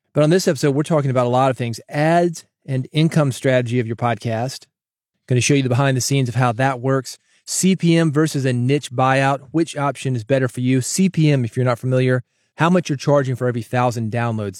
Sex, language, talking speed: male, English, 220 wpm